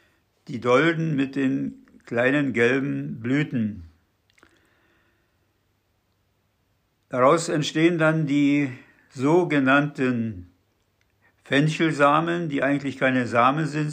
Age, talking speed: 60-79, 80 wpm